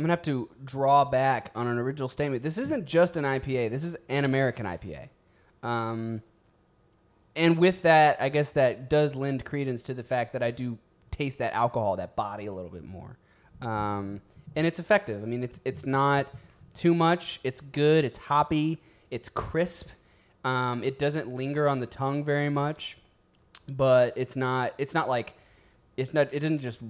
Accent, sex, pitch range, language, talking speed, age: American, male, 115-150 Hz, English, 185 wpm, 20-39